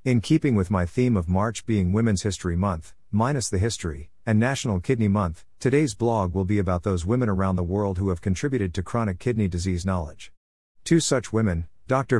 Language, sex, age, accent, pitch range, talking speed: English, male, 50-69, American, 90-115 Hz, 195 wpm